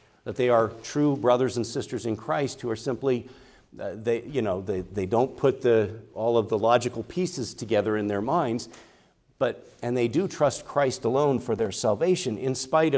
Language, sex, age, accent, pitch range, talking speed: English, male, 50-69, American, 115-150 Hz, 195 wpm